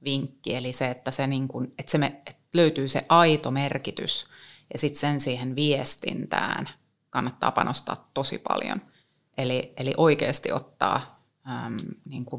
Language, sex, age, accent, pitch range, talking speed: Finnish, female, 30-49, native, 135-165 Hz, 150 wpm